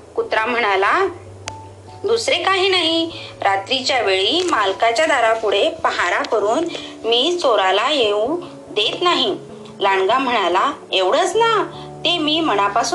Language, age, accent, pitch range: Marathi, 20-39, native, 220-345 Hz